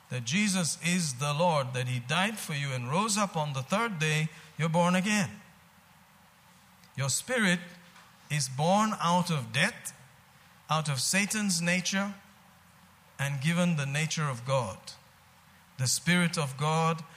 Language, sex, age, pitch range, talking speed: English, male, 50-69, 135-175 Hz, 145 wpm